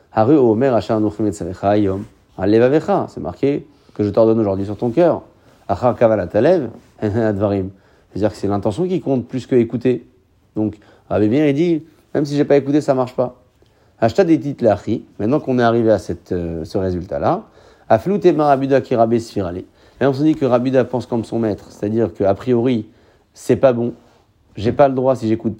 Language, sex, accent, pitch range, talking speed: French, male, French, 105-140 Hz, 155 wpm